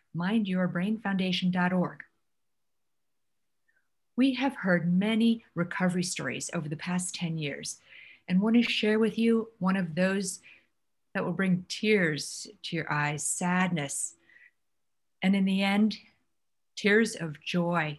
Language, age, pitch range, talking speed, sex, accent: English, 50-69, 155-205 Hz, 120 wpm, female, American